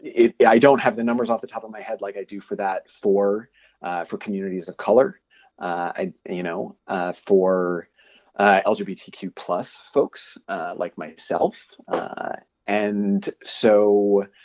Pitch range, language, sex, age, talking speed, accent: 100-120 Hz, English, male, 30-49, 165 wpm, American